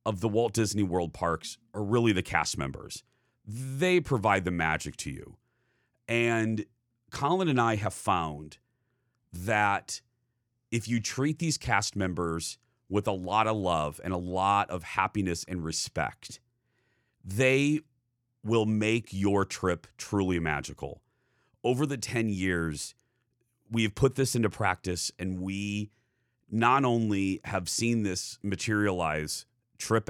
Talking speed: 135 wpm